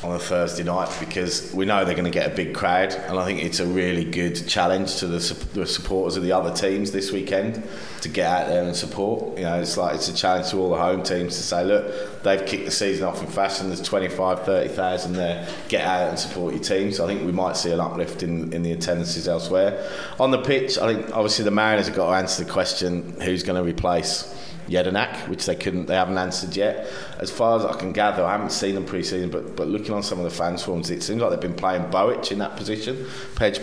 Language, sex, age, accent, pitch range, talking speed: English, male, 20-39, British, 90-100 Hz, 250 wpm